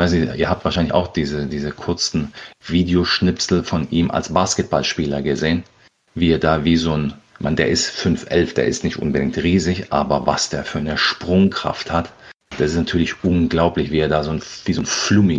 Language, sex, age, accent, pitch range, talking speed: German, male, 40-59, German, 85-105 Hz, 175 wpm